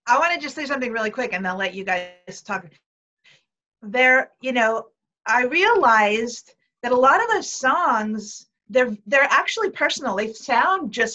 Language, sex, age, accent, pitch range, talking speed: English, female, 50-69, American, 205-260 Hz, 180 wpm